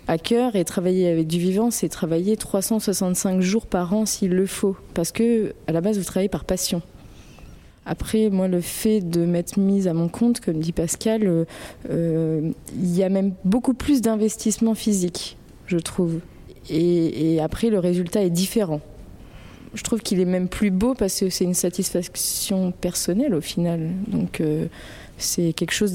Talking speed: 175 wpm